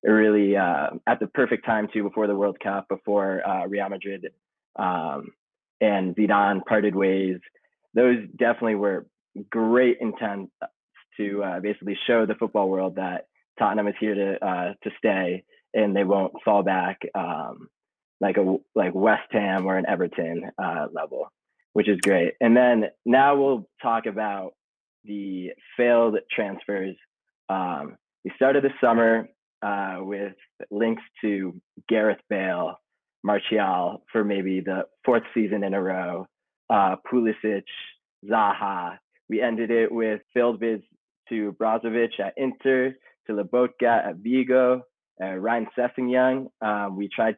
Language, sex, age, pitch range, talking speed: English, male, 20-39, 100-115 Hz, 140 wpm